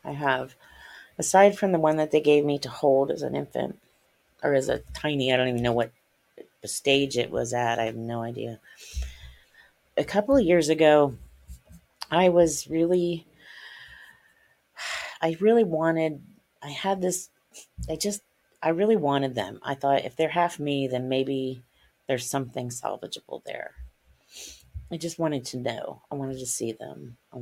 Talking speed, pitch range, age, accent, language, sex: 165 wpm, 125-155 Hz, 30-49, American, English, female